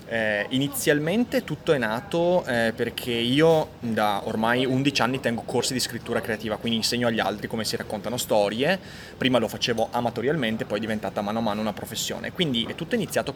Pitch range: 110-135 Hz